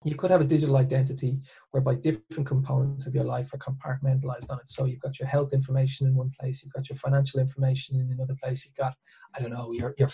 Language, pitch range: English, 130-140 Hz